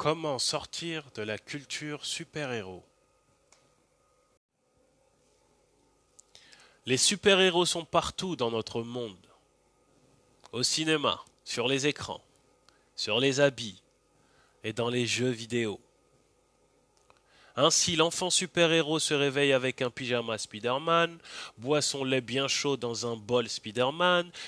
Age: 30-49